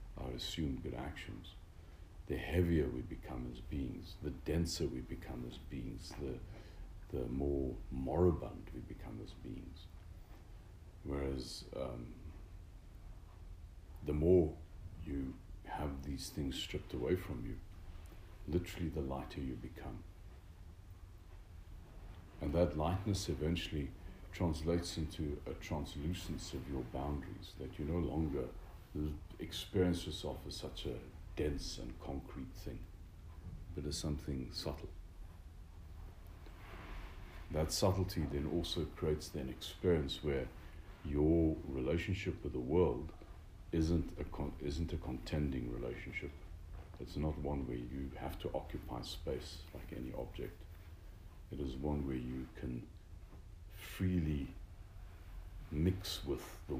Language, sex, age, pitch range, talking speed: English, male, 60-79, 75-90 Hz, 115 wpm